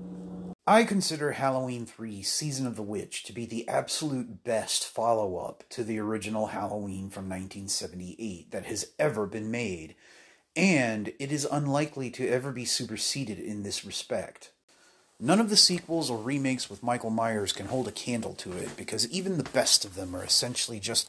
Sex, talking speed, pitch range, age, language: male, 170 wpm, 105-140 Hz, 30-49, English